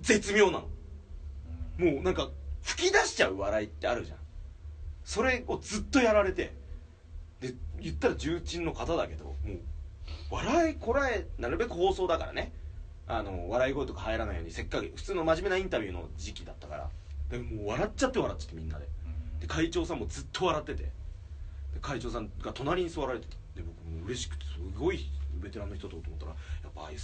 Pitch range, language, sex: 75-85 Hz, Japanese, male